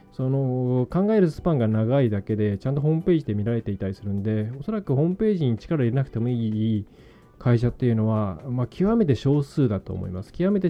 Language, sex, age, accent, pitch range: Japanese, male, 20-39, native, 110-155 Hz